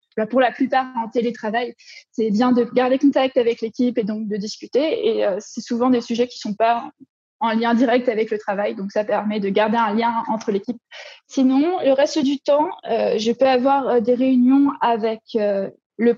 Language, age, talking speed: French, 20-39, 210 wpm